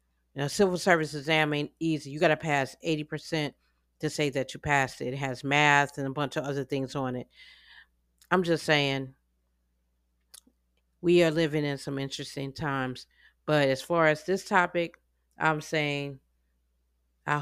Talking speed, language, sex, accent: 160 wpm, English, female, American